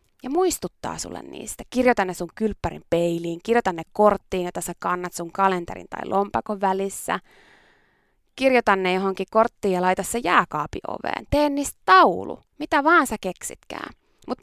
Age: 20-39